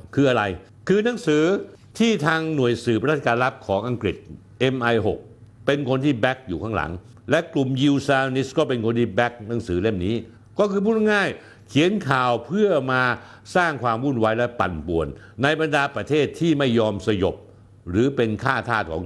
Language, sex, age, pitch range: Thai, male, 60-79, 105-150 Hz